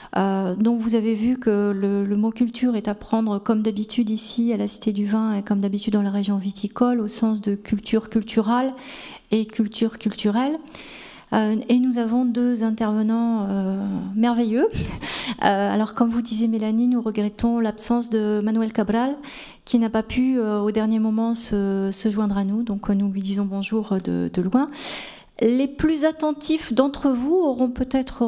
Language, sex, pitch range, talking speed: French, female, 205-240 Hz, 195 wpm